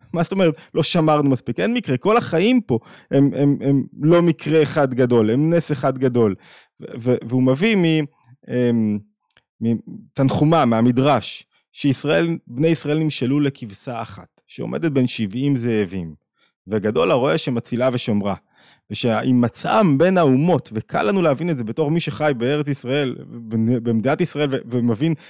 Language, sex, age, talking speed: Hebrew, male, 20-39, 135 wpm